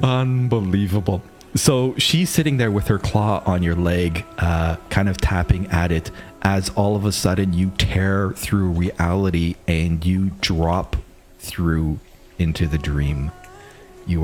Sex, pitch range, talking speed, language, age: male, 90-120 Hz, 145 wpm, English, 40-59